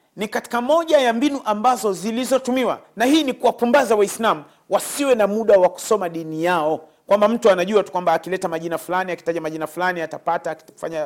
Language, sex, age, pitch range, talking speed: Swahili, male, 40-59, 185-240 Hz, 175 wpm